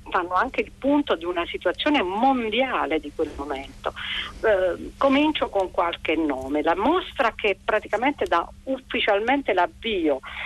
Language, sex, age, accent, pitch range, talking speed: Italian, female, 50-69, native, 160-220 Hz, 130 wpm